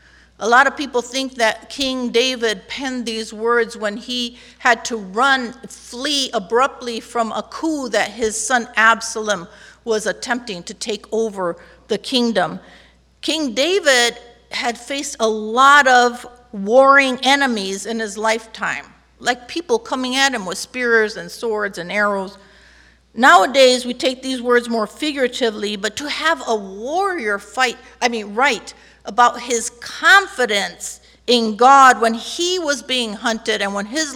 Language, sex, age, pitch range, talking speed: English, female, 50-69, 200-250 Hz, 150 wpm